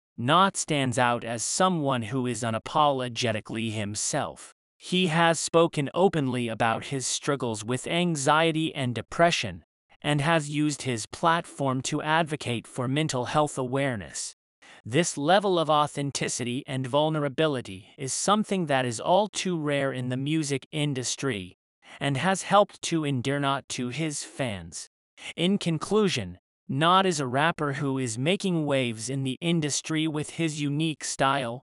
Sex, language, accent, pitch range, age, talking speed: male, English, American, 130-165 Hz, 30-49, 140 wpm